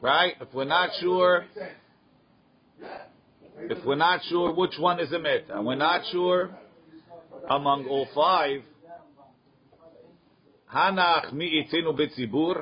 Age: 50-69